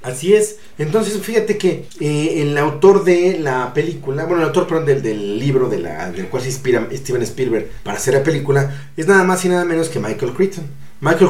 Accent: Mexican